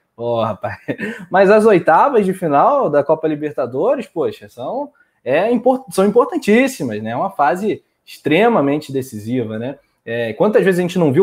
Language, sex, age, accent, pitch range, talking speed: Portuguese, male, 20-39, Brazilian, 135-195 Hz, 165 wpm